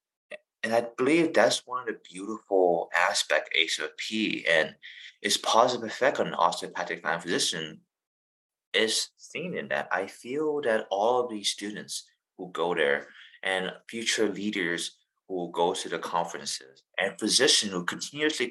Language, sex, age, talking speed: English, male, 30-49, 145 wpm